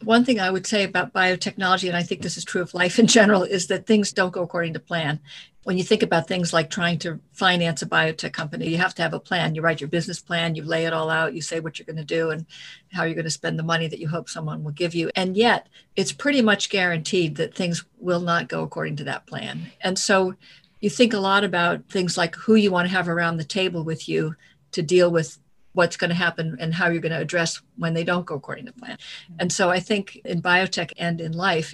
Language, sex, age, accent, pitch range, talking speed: English, female, 50-69, American, 165-185 Hz, 260 wpm